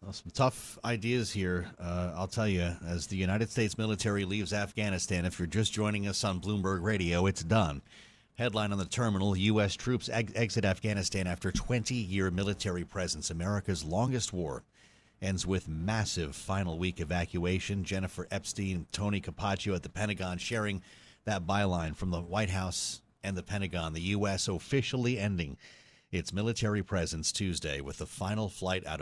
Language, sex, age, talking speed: English, male, 40-59, 165 wpm